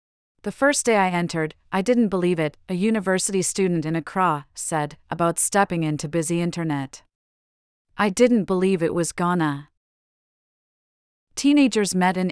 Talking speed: 140 wpm